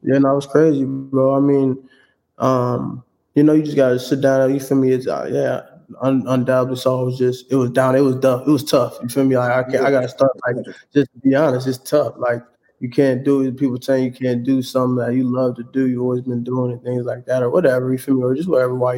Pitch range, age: 125-135 Hz, 20-39